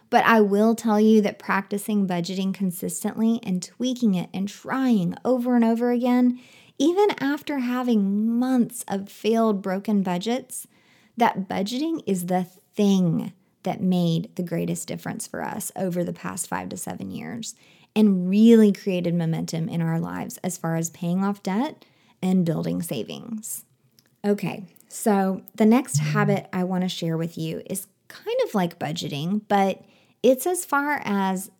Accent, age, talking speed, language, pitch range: American, 20-39, 155 wpm, English, 180-225 Hz